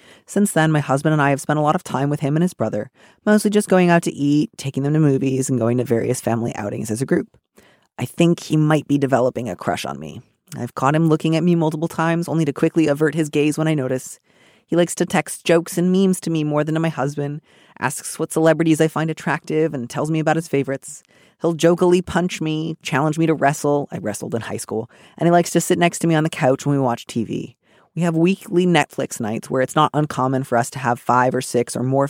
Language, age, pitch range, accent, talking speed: English, 30-49, 130-165 Hz, American, 250 wpm